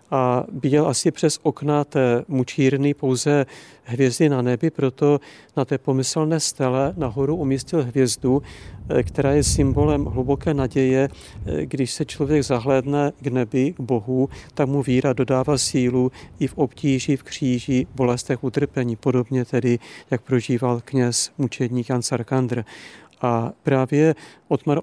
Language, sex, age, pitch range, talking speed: Czech, male, 50-69, 125-145 Hz, 140 wpm